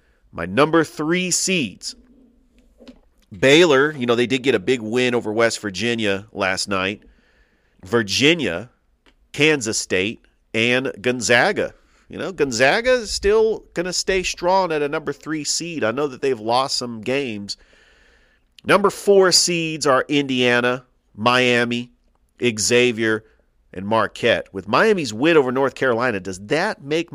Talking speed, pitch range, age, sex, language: 135 wpm, 100-145 Hz, 40-59, male, English